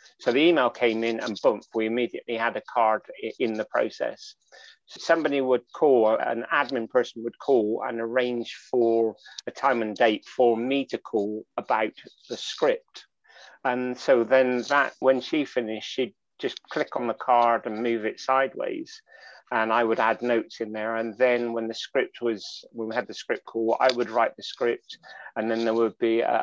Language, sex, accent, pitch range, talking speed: English, male, British, 115-130 Hz, 190 wpm